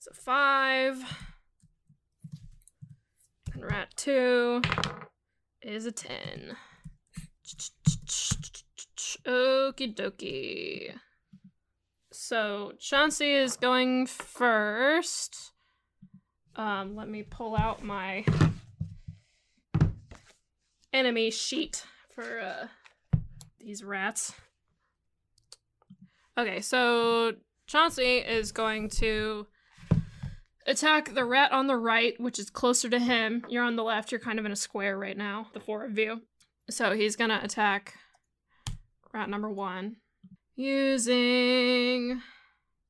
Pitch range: 205-250 Hz